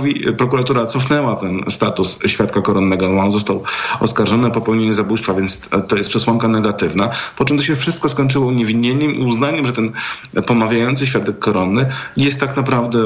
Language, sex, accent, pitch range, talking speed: Polish, male, native, 100-125 Hz, 160 wpm